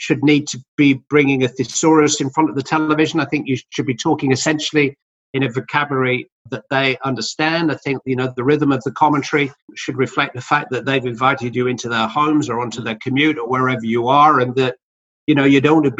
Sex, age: male, 50-69